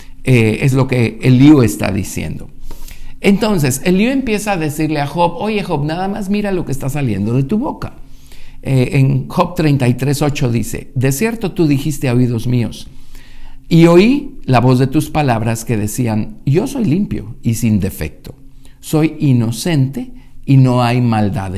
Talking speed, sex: 165 wpm, male